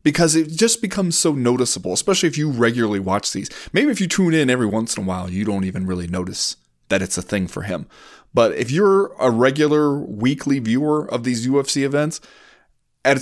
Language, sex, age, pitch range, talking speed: English, male, 30-49, 105-150 Hz, 205 wpm